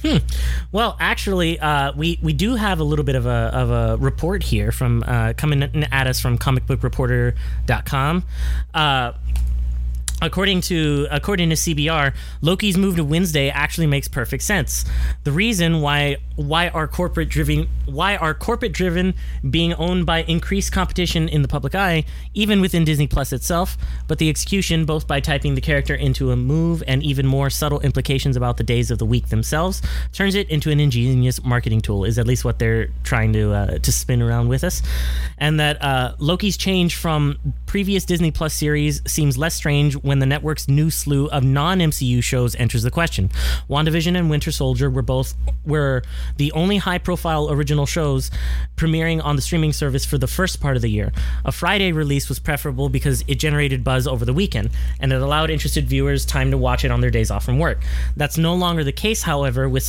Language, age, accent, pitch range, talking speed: English, 20-39, American, 125-160 Hz, 190 wpm